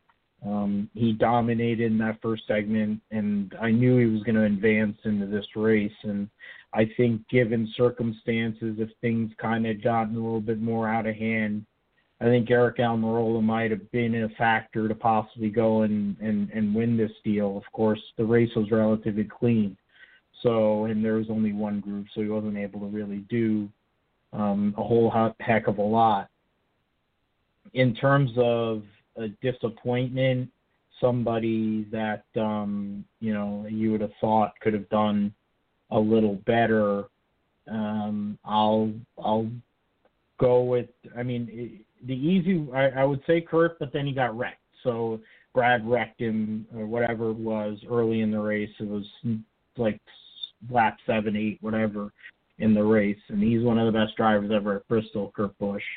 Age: 40-59